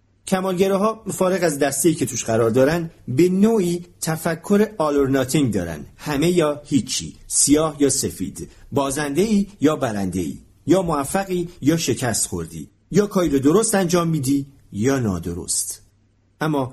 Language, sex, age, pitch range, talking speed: Persian, male, 40-59, 110-170 Hz, 145 wpm